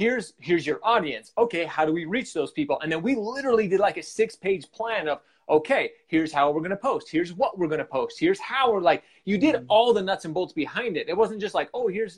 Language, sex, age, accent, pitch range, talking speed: English, male, 30-49, American, 140-200 Hz, 260 wpm